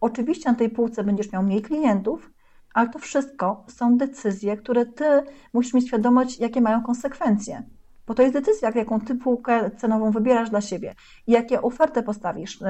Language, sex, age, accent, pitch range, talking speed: Polish, female, 30-49, native, 205-240 Hz, 170 wpm